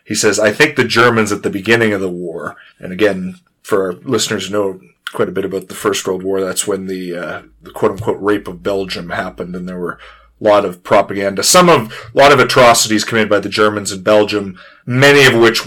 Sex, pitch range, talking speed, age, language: male, 95-110 Hz, 230 wpm, 30-49, English